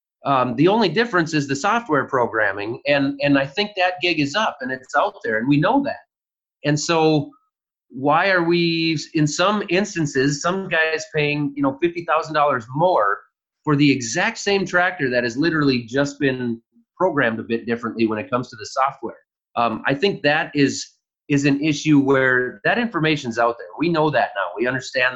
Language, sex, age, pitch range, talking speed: English, male, 30-49, 125-165 Hz, 185 wpm